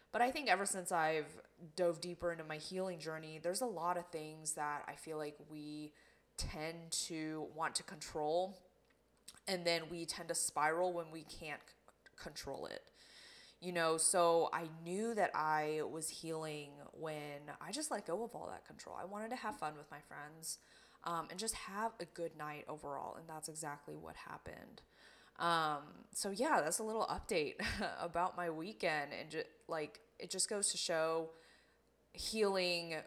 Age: 20-39